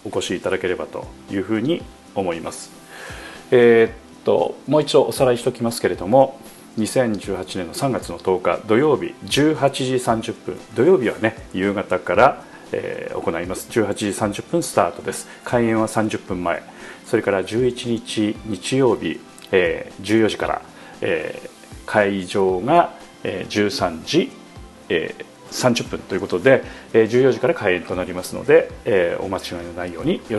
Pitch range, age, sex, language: 105-135 Hz, 40-59, male, Japanese